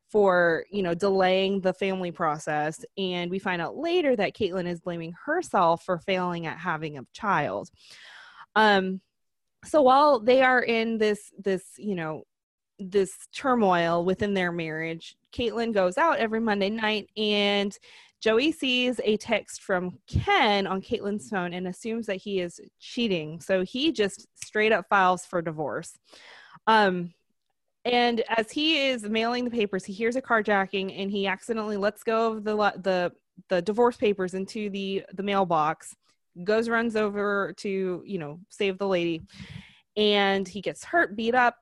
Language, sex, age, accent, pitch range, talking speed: English, female, 20-39, American, 185-225 Hz, 160 wpm